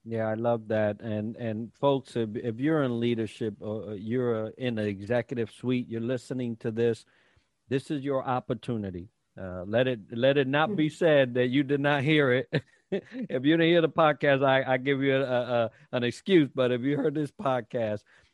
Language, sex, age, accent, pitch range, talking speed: English, male, 50-69, American, 115-145 Hz, 195 wpm